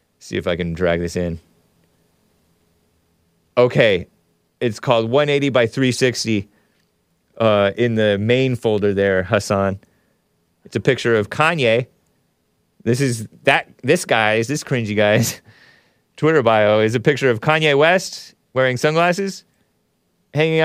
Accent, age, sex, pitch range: American, 30-49, male, 95-130 Hz